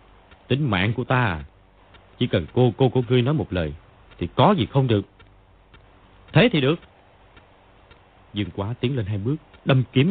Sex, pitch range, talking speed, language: male, 95-125 Hz, 170 wpm, Vietnamese